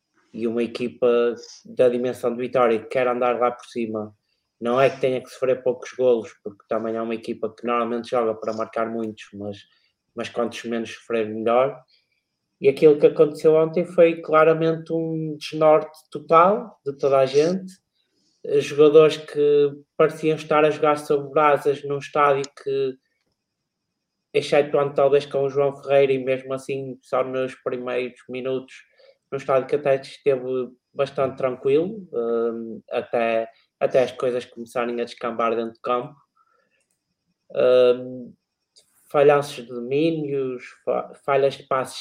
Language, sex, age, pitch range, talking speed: Portuguese, male, 20-39, 120-150 Hz, 140 wpm